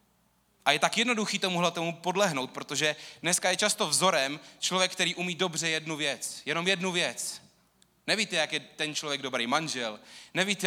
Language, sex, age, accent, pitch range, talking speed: Czech, male, 30-49, native, 115-160 Hz, 165 wpm